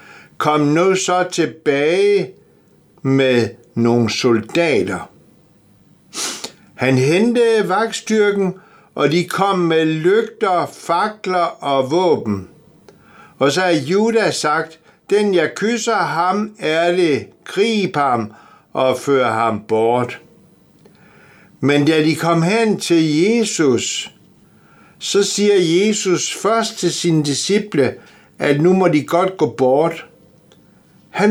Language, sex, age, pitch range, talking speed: Danish, male, 60-79, 145-200 Hz, 105 wpm